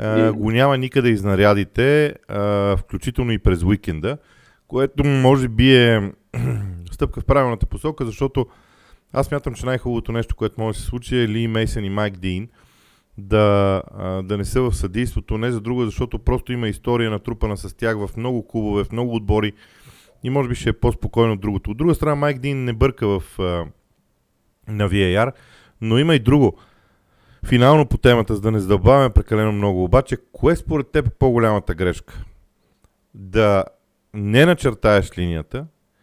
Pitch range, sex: 100-130 Hz, male